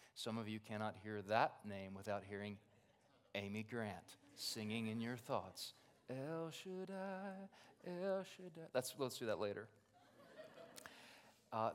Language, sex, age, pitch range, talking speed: English, male, 30-49, 115-155 Hz, 125 wpm